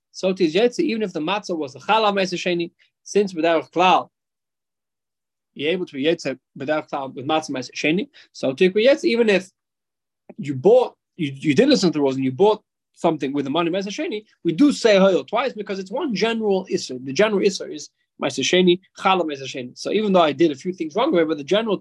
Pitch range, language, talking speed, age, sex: 150-205 Hz, English, 195 wpm, 20-39, male